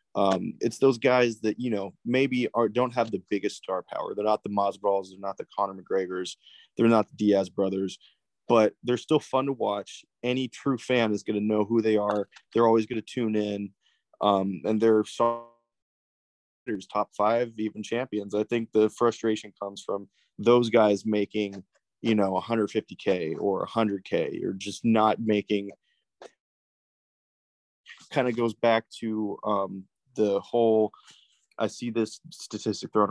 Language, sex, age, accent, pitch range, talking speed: English, male, 20-39, American, 100-115 Hz, 160 wpm